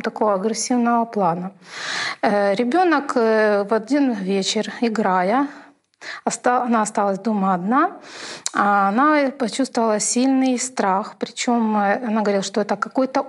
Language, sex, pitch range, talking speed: Russian, female, 210-250 Hz, 105 wpm